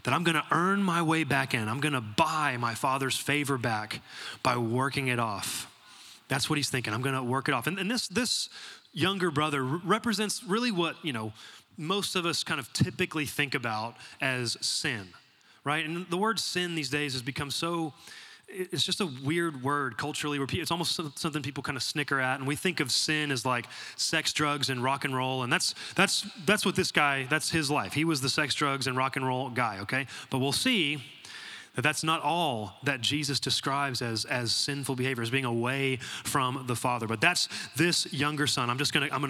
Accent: American